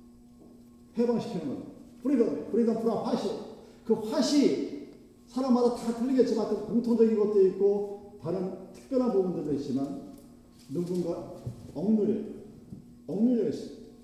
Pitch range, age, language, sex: 145-225 Hz, 40-59, Korean, male